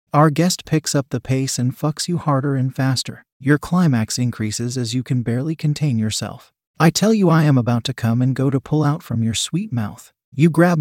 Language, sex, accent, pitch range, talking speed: English, male, American, 120-150 Hz, 220 wpm